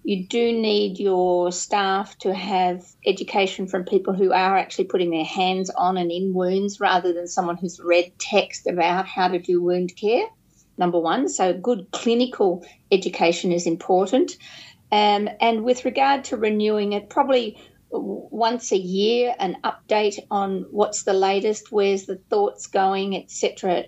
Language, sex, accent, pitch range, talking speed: English, female, Australian, 185-230 Hz, 160 wpm